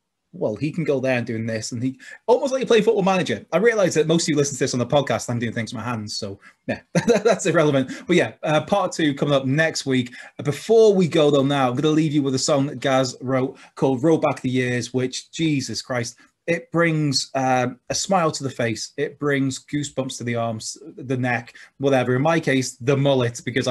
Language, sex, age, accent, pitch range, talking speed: English, male, 20-39, British, 120-150 Hz, 240 wpm